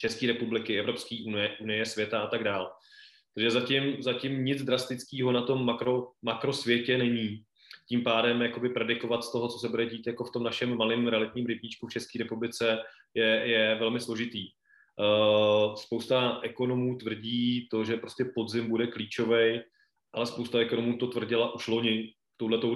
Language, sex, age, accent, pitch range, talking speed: Czech, male, 20-39, native, 110-120 Hz, 155 wpm